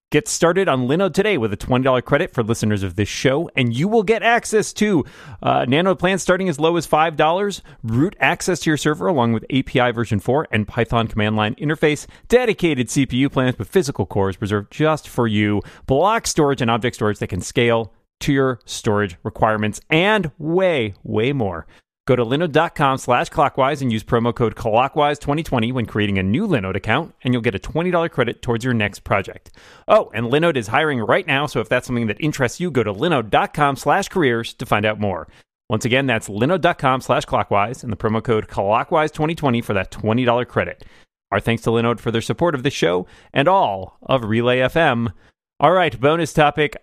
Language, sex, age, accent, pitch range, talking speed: English, male, 30-49, American, 115-165 Hz, 195 wpm